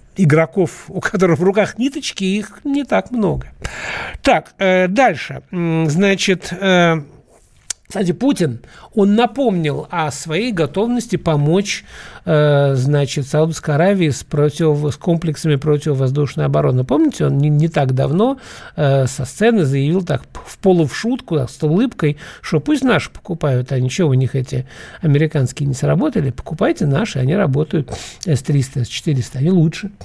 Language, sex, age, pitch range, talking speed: Russian, male, 60-79, 135-175 Hz, 140 wpm